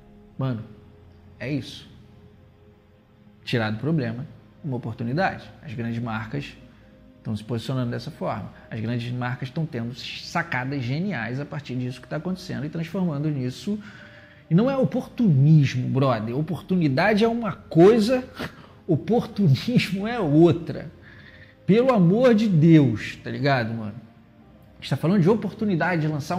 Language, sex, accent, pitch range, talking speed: Portuguese, male, Brazilian, 125-185 Hz, 135 wpm